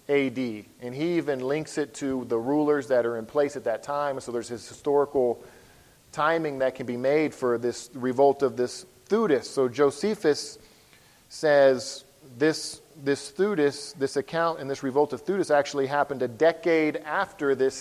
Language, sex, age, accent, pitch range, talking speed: English, male, 40-59, American, 120-145 Hz, 170 wpm